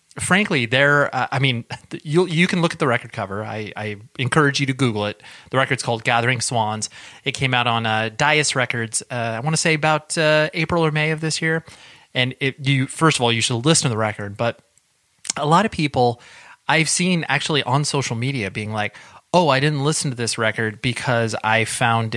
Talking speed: 210 wpm